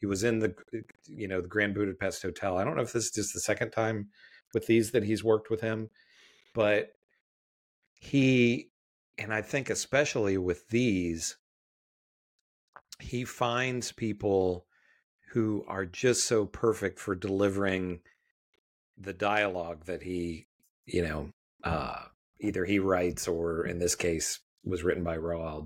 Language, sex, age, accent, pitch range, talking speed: English, male, 40-59, American, 90-110 Hz, 145 wpm